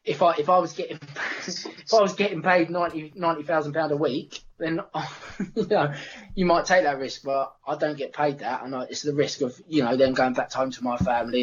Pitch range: 125-150 Hz